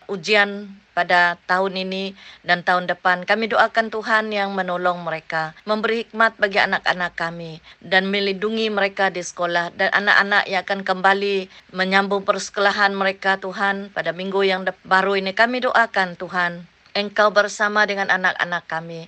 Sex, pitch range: female, 185-210 Hz